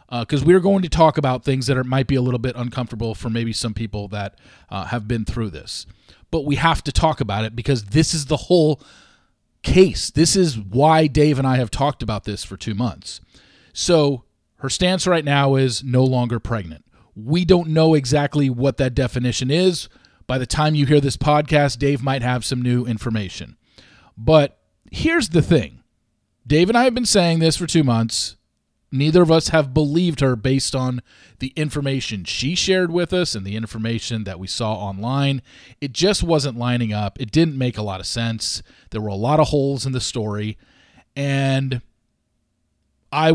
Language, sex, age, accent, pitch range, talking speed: English, male, 40-59, American, 115-145 Hz, 190 wpm